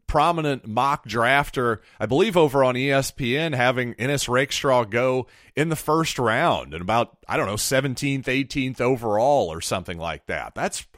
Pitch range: 105-140 Hz